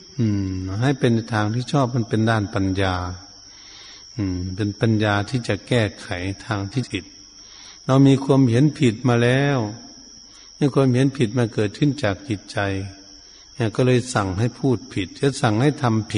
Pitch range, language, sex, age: 100-125 Hz, Thai, male, 70-89